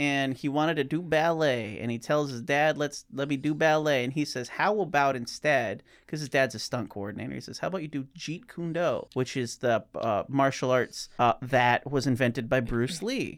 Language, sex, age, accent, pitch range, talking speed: English, male, 30-49, American, 120-145 Hz, 225 wpm